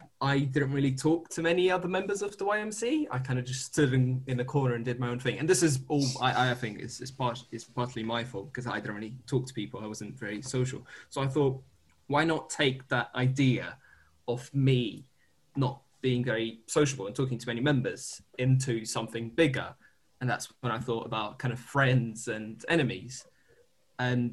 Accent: British